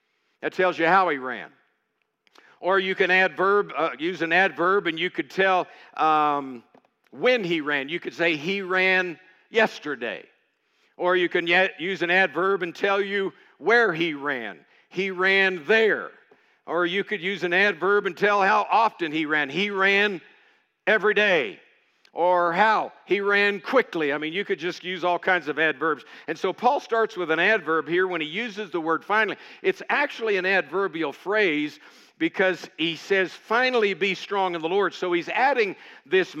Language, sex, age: English, male, 60-79